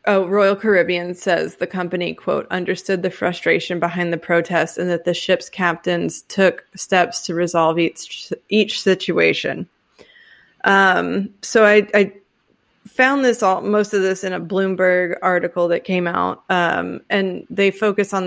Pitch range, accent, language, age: 180-205 Hz, American, English, 20-39